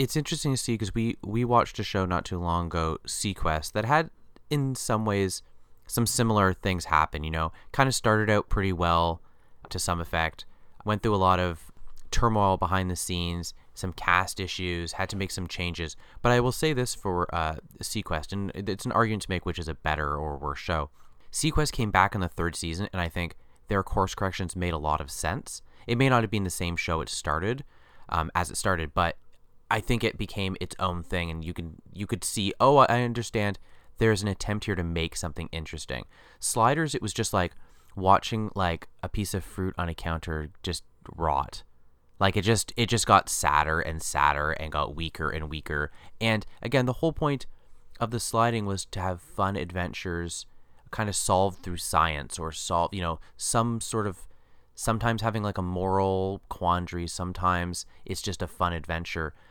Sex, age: male, 30-49